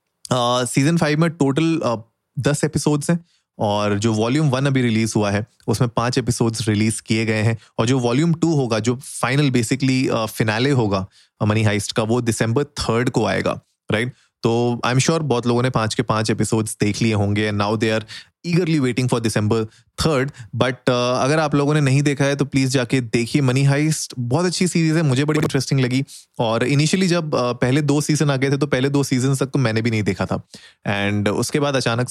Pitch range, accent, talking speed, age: 110-135 Hz, native, 205 wpm, 30-49